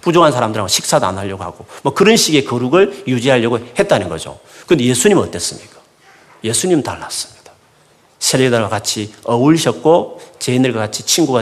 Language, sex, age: Korean, male, 40-59